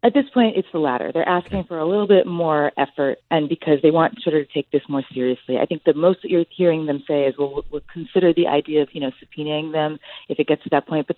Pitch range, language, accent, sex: 145-180 Hz, English, American, female